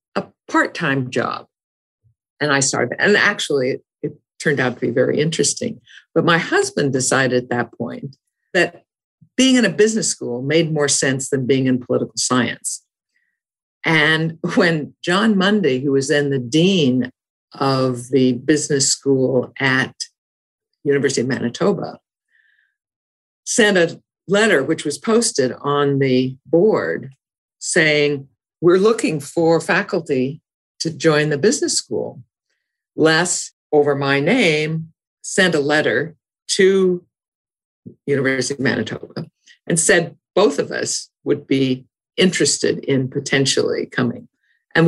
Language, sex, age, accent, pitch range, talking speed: English, female, 50-69, American, 135-175 Hz, 125 wpm